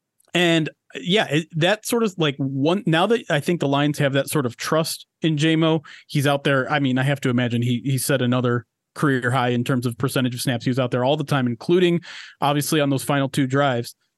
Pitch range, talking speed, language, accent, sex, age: 130-160 Hz, 235 wpm, English, American, male, 30-49